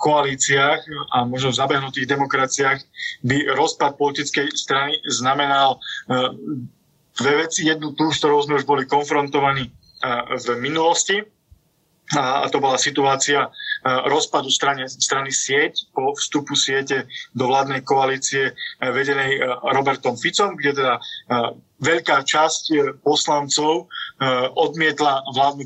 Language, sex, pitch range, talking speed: Slovak, male, 135-155 Hz, 105 wpm